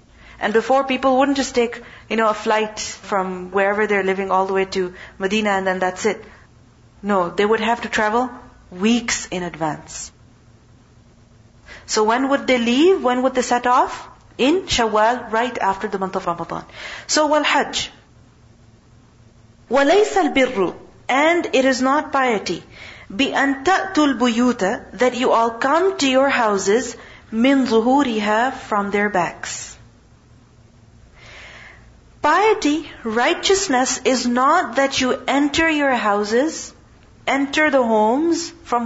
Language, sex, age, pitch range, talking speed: English, female, 40-59, 195-270 Hz, 135 wpm